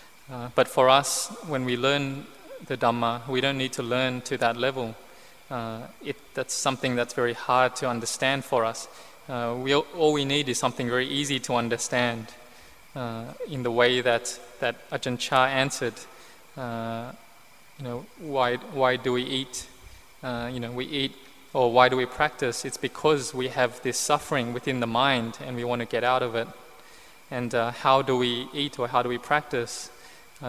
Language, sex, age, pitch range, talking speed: English, male, 20-39, 120-135 Hz, 185 wpm